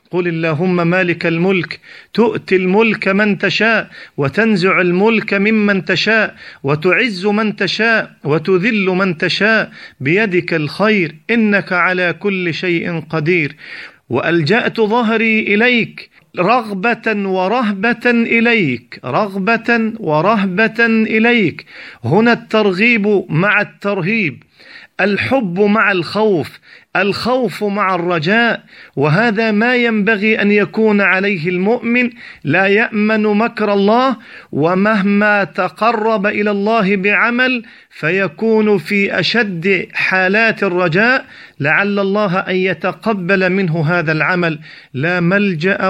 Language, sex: Arabic, male